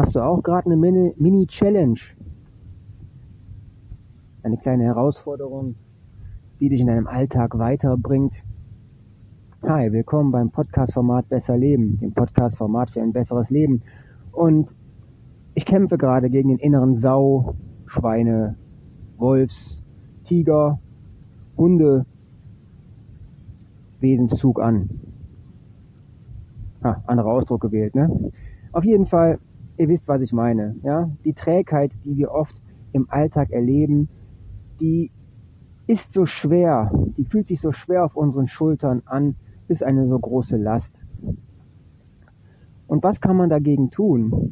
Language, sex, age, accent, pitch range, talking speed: German, male, 30-49, German, 110-145 Hz, 115 wpm